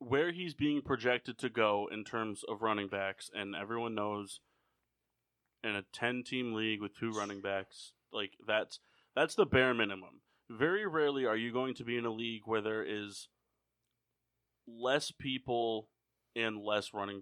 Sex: male